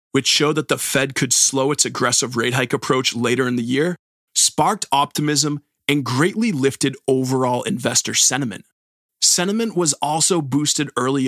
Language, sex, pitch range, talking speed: English, male, 130-165 Hz, 155 wpm